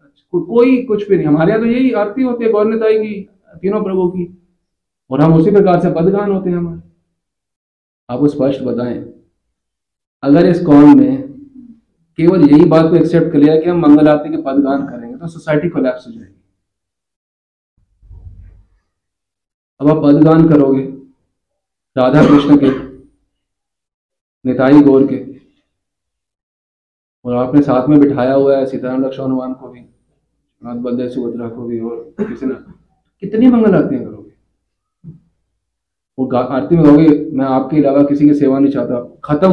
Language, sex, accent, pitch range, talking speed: Hindi, male, native, 130-175 Hz, 140 wpm